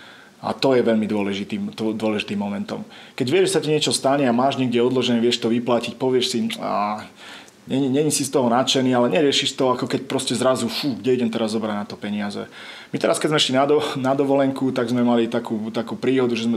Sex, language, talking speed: male, Slovak, 215 wpm